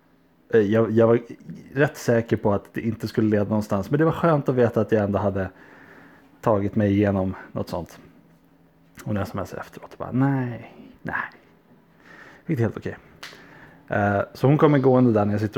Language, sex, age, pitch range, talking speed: Swedish, male, 30-49, 100-125 Hz, 180 wpm